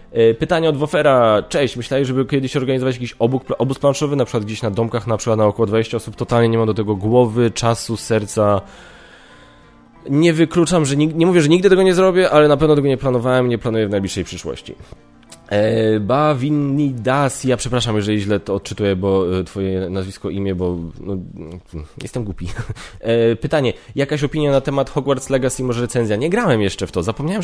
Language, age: Polish, 20-39